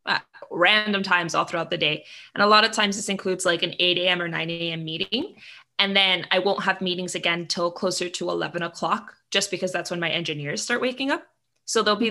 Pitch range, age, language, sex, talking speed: 180-225 Hz, 20-39, English, female, 225 wpm